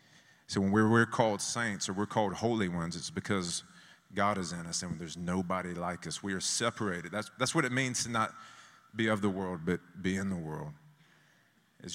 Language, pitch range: Russian, 90-125 Hz